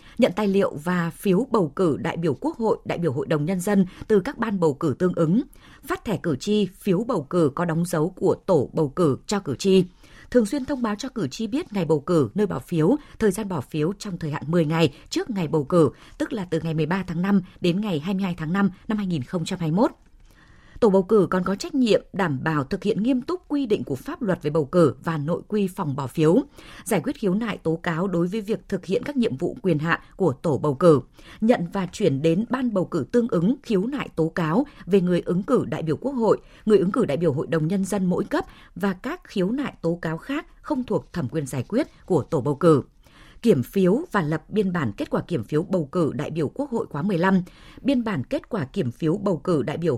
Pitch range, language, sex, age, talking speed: 160-220 Hz, Vietnamese, female, 20-39, 245 wpm